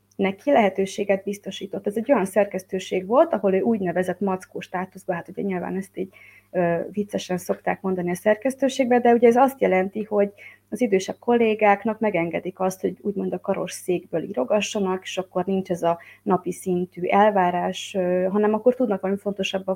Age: 30-49